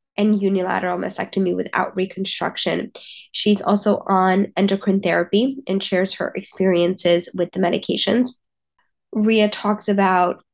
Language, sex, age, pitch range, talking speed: English, female, 20-39, 190-215 Hz, 115 wpm